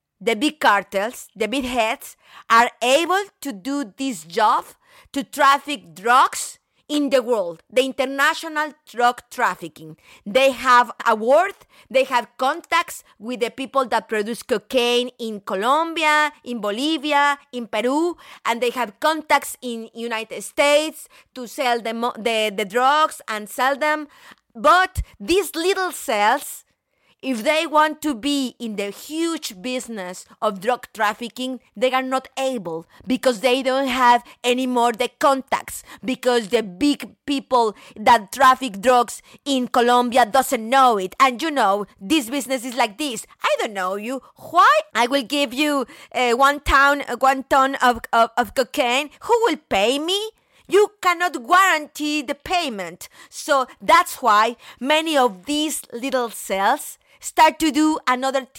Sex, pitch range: female, 235-290 Hz